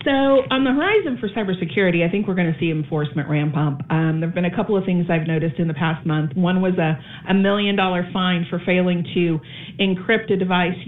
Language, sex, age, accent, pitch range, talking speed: English, female, 40-59, American, 160-205 Hz, 220 wpm